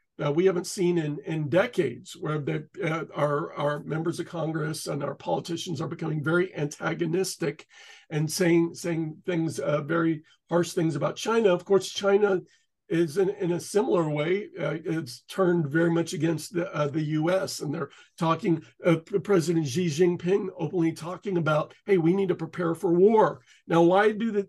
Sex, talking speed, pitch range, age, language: male, 180 wpm, 160-195 Hz, 50-69, English